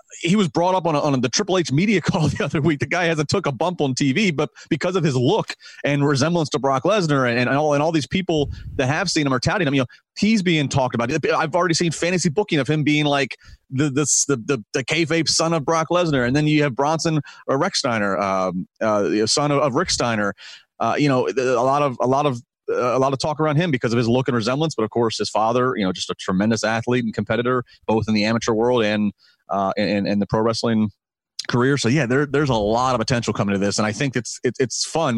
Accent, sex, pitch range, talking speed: American, male, 110-150 Hz, 265 wpm